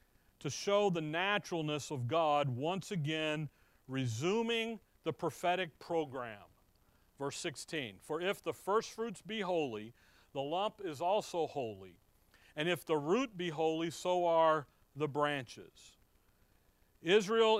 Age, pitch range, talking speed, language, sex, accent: 40-59, 125-195 Hz, 125 wpm, English, male, American